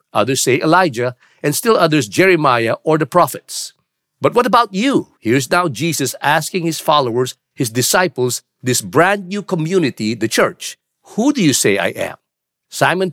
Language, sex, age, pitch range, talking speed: English, male, 50-69, 130-175 Hz, 160 wpm